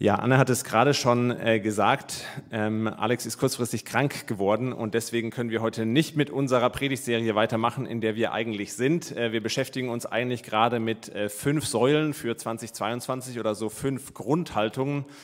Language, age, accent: German, 30-49, German